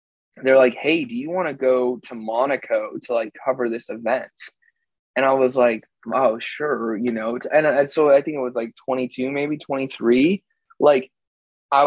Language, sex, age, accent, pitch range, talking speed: English, male, 20-39, American, 120-140 Hz, 180 wpm